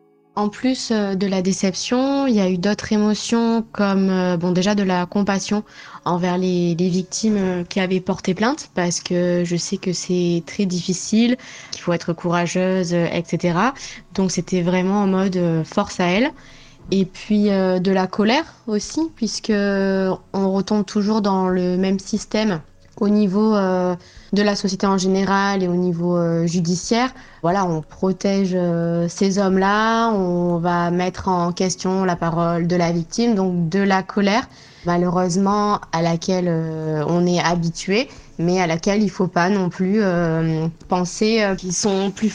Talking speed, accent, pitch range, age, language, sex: 160 wpm, French, 175-205 Hz, 20-39, French, female